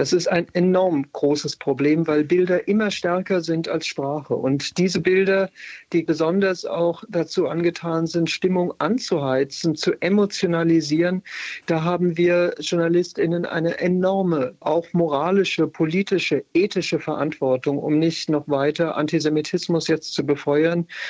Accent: German